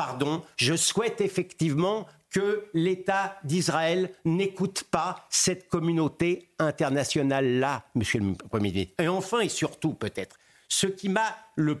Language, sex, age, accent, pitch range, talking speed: French, male, 60-79, French, 150-210 Hz, 125 wpm